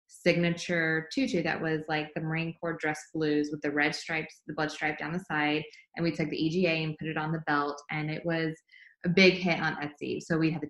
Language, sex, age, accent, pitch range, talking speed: English, female, 20-39, American, 160-215 Hz, 240 wpm